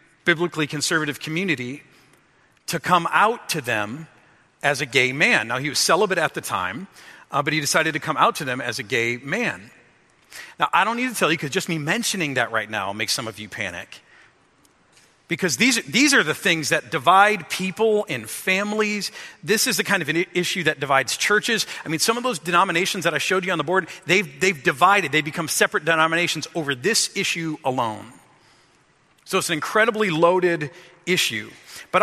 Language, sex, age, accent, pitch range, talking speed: English, male, 40-59, American, 145-185 Hz, 195 wpm